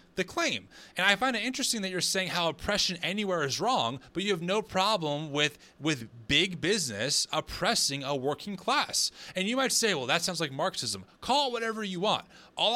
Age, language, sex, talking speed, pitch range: 30-49, English, male, 200 wpm, 145-200 Hz